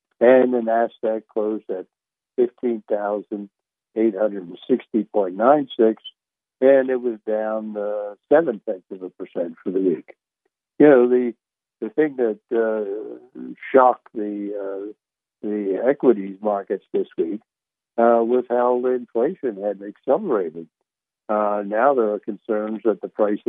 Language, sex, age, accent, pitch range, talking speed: English, male, 60-79, American, 100-120 Hz, 145 wpm